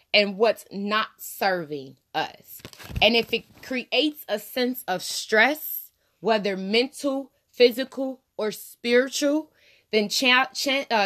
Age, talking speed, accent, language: 20-39, 110 wpm, American, English